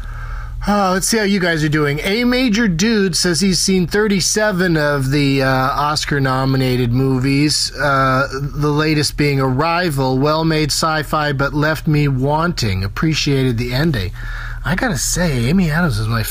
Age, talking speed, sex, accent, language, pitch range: 30-49, 155 wpm, male, American, English, 115-180 Hz